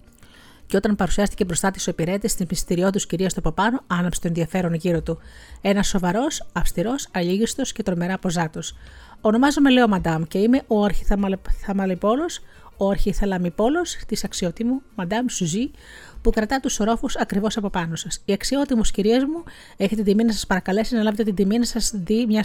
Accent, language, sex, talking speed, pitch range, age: native, Greek, female, 175 wpm, 175-225 Hz, 30-49